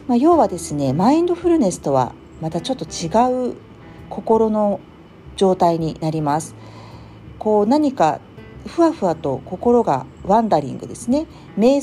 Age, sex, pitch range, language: 50-69, female, 150-255 Hz, Japanese